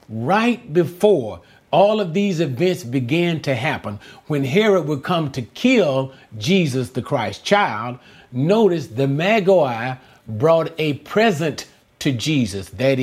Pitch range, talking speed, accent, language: 130-175 Hz, 130 wpm, American, English